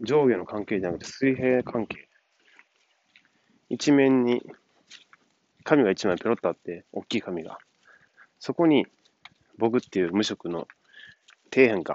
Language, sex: Japanese, male